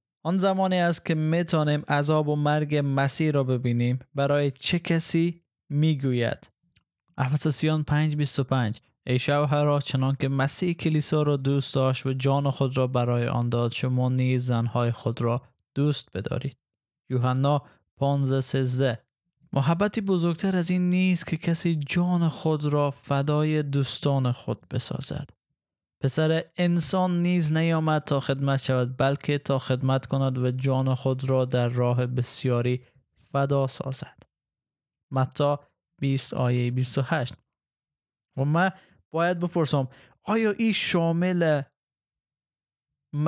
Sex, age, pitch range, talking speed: male, 20-39, 130-155 Hz, 130 wpm